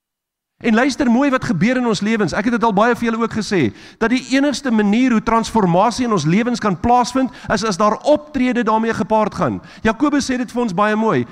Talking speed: 215 wpm